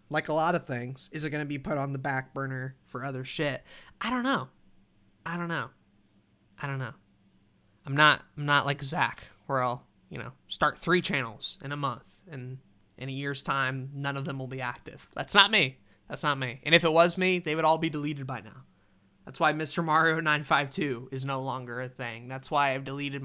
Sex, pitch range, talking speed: male, 130-160 Hz, 225 wpm